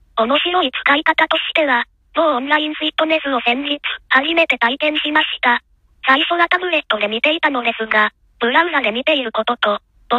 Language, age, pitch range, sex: Japanese, 20-39, 240-315 Hz, male